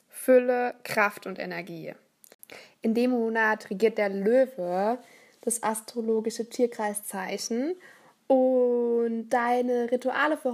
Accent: German